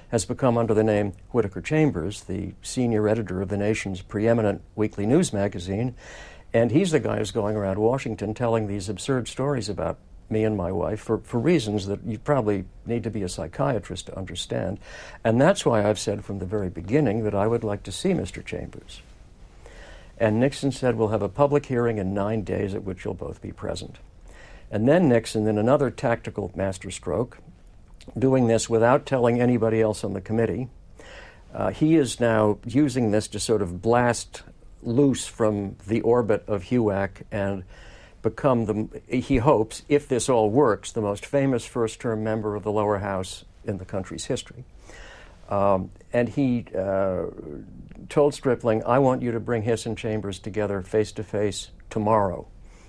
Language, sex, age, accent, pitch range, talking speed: English, male, 60-79, American, 100-120 Hz, 170 wpm